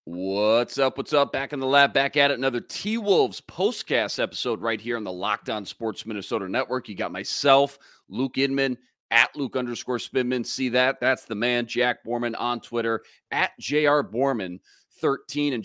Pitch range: 115-145 Hz